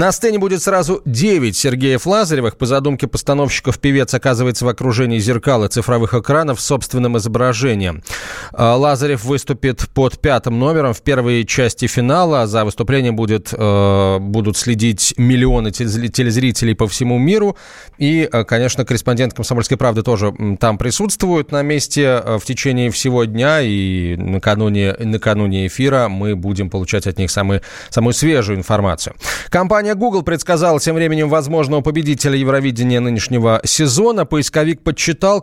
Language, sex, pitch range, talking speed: Russian, male, 115-160 Hz, 130 wpm